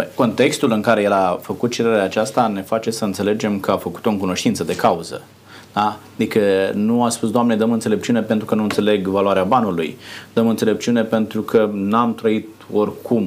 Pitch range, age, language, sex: 100-125 Hz, 30-49, Romanian, male